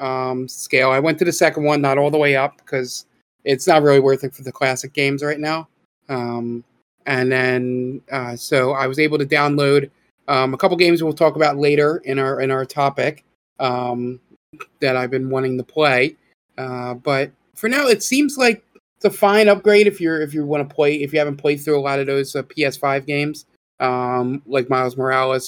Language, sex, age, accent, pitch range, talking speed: English, male, 30-49, American, 125-150 Hz, 210 wpm